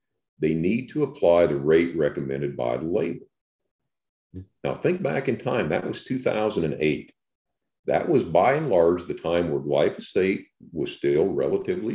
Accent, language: American, English